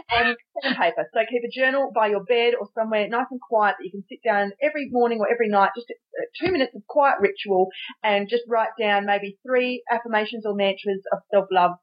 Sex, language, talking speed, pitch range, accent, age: female, English, 210 wpm, 195-250 Hz, Australian, 30-49